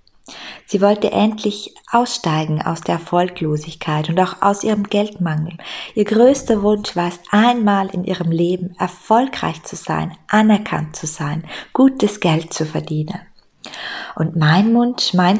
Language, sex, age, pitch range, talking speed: German, female, 20-39, 165-205 Hz, 135 wpm